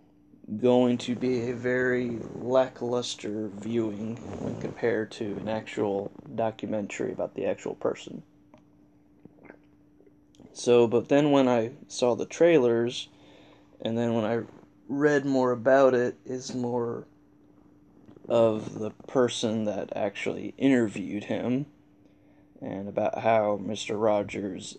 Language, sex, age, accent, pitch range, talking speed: English, male, 20-39, American, 105-125 Hz, 115 wpm